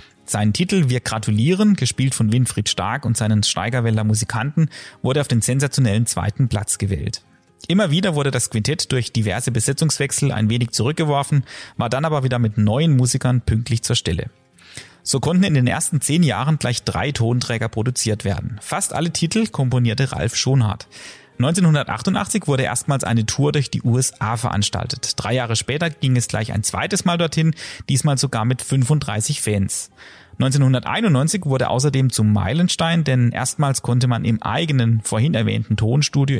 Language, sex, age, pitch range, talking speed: German, male, 30-49, 110-145 Hz, 160 wpm